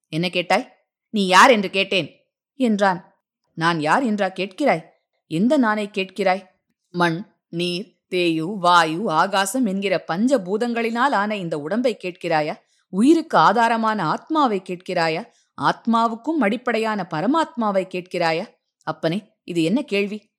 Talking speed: 110 wpm